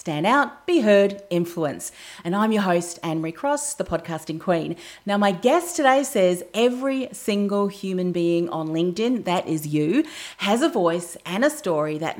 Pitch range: 170-220 Hz